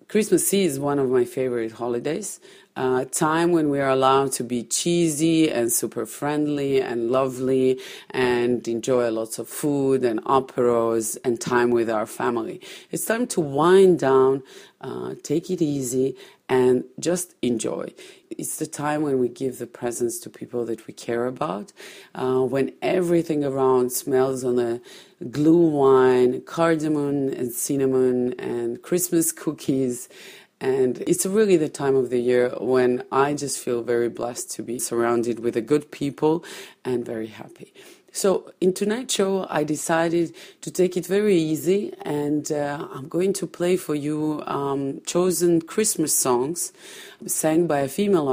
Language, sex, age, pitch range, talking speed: English, female, 30-49, 125-165 Hz, 160 wpm